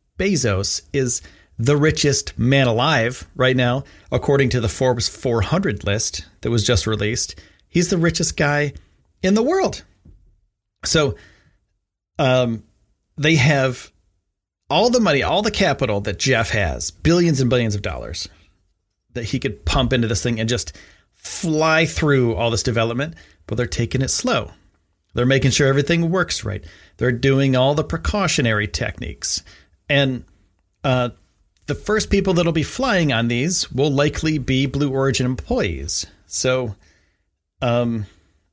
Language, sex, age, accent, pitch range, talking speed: English, male, 40-59, American, 95-135 Hz, 145 wpm